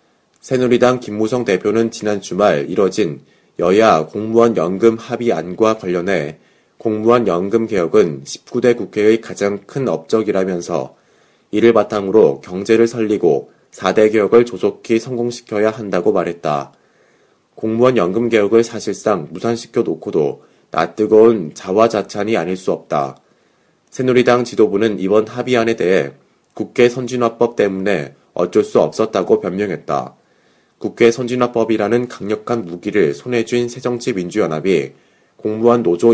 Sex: male